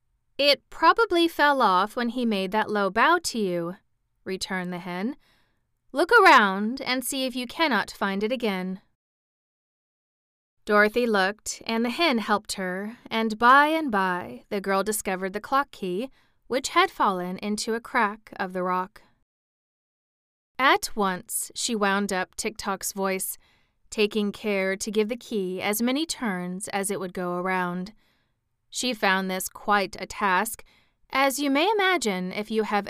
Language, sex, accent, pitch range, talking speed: English, female, American, 190-235 Hz, 155 wpm